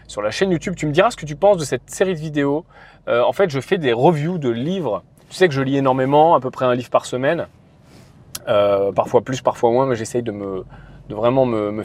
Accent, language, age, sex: French, French, 30-49, male